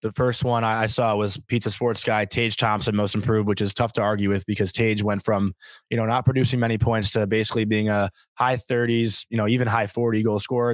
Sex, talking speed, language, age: male, 235 wpm, English, 20-39